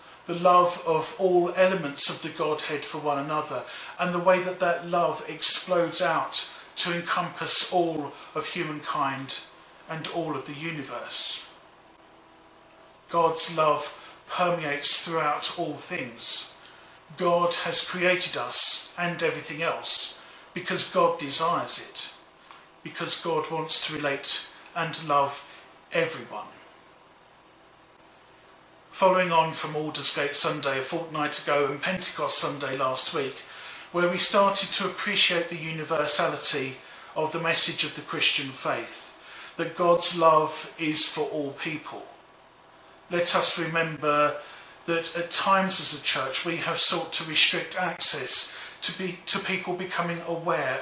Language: English